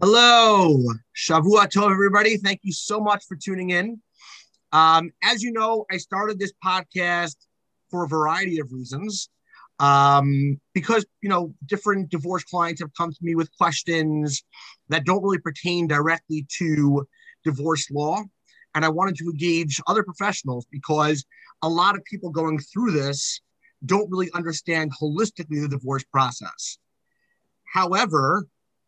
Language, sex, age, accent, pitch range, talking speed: English, male, 30-49, American, 145-185 Hz, 140 wpm